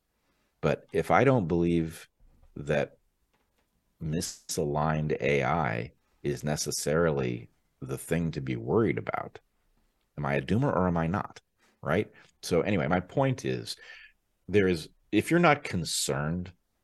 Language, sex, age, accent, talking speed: English, male, 40-59, American, 130 wpm